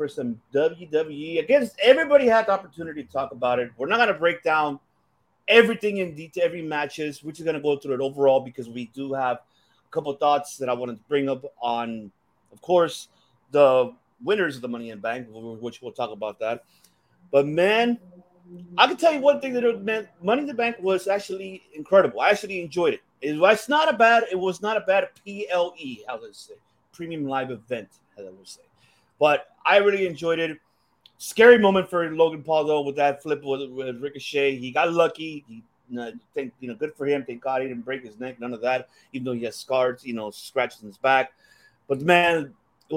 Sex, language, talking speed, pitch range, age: male, English, 220 wpm, 125-175 Hz, 30-49